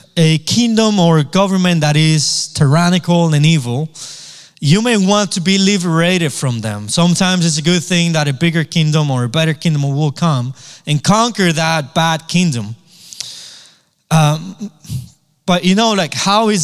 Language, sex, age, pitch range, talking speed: English, male, 20-39, 135-170 Hz, 160 wpm